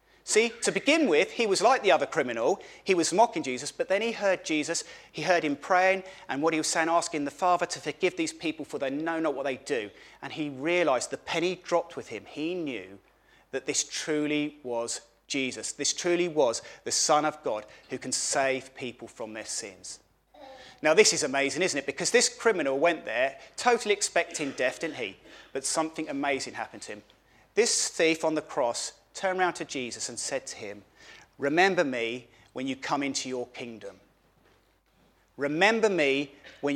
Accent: British